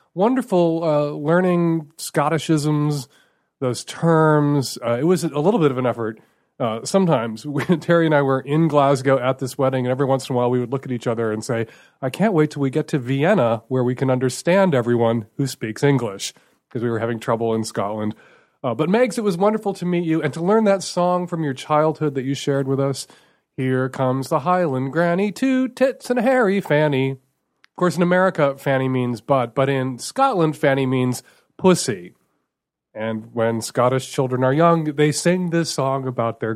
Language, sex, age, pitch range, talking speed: English, male, 30-49, 125-175 Hz, 200 wpm